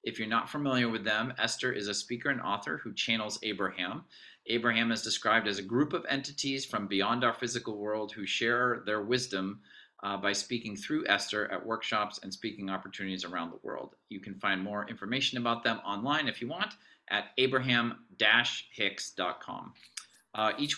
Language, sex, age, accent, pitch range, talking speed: English, male, 30-49, American, 100-120 Hz, 170 wpm